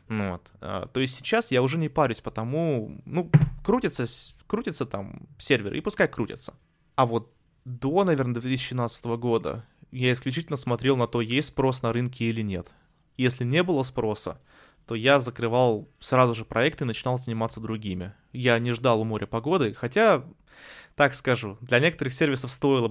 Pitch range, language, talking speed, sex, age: 115-135 Hz, Russian, 160 wpm, male, 20-39